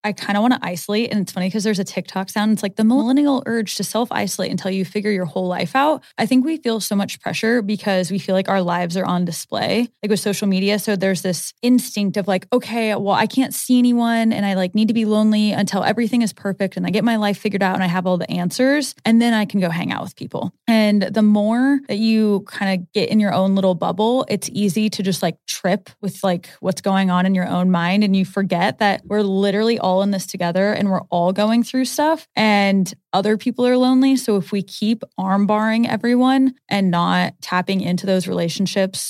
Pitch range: 190-225 Hz